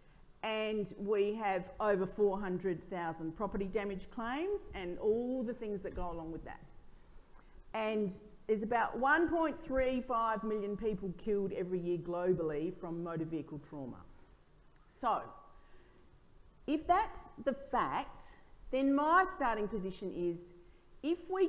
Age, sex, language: 40-59, female, English